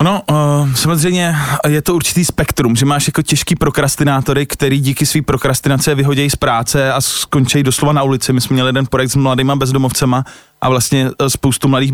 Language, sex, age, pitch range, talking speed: Slovak, male, 20-39, 130-150 Hz, 175 wpm